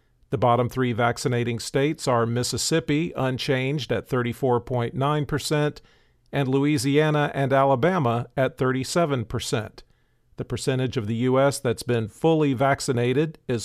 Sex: male